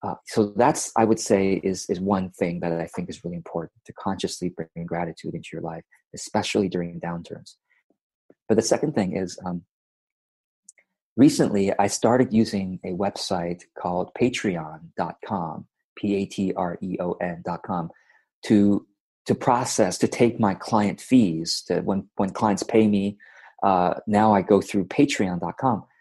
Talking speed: 140 wpm